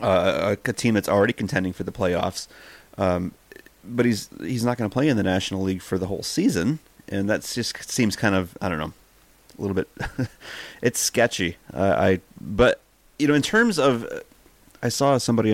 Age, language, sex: 30-49, English, male